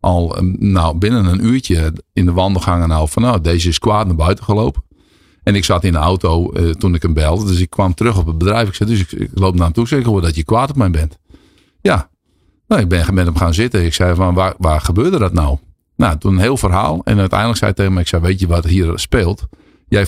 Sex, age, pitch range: male, 50-69, 85-105 Hz